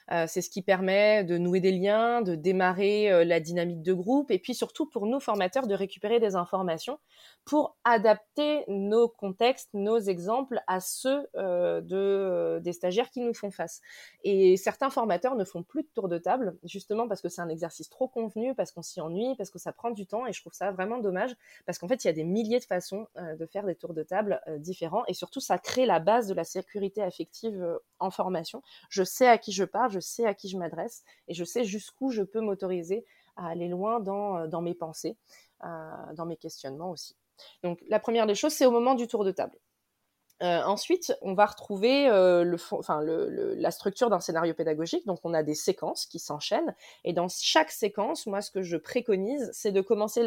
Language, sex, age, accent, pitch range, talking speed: French, female, 20-39, French, 175-230 Hz, 220 wpm